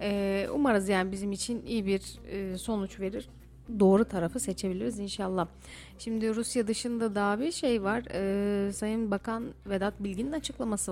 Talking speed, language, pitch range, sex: 130 wpm, Turkish, 200-265 Hz, female